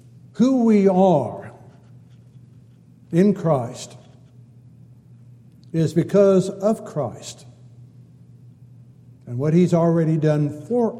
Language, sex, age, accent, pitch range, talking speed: English, male, 60-79, American, 125-180 Hz, 80 wpm